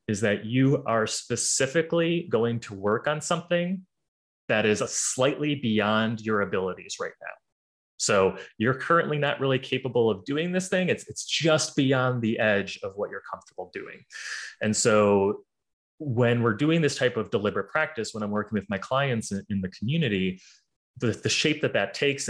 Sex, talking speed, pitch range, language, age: male, 175 wpm, 105-145 Hz, English, 20-39